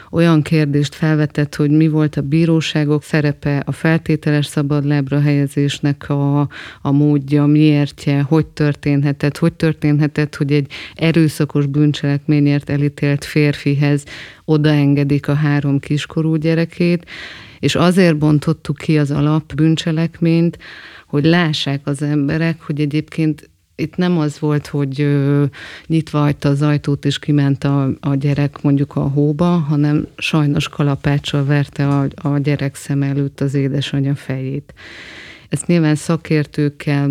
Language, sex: Hungarian, female